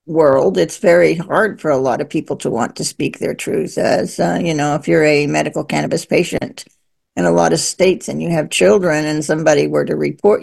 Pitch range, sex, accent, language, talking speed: 150-195 Hz, female, American, English, 225 wpm